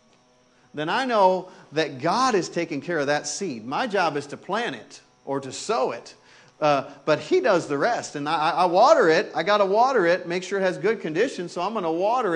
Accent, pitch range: American, 135-185 Hz